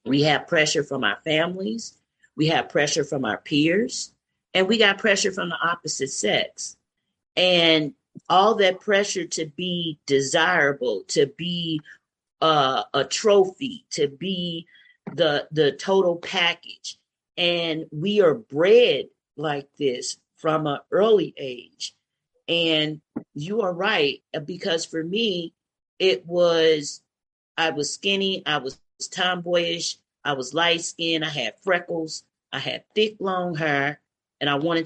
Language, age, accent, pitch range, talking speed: English, 40-59, American, 155-200 Hz, 135 wpm